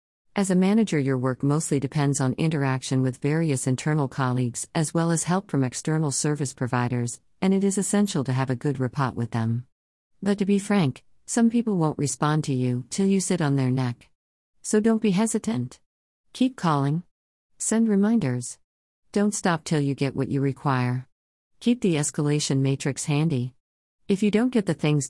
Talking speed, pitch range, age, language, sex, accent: 180 wpm, 125-170 Hz, 50-69, English, female, American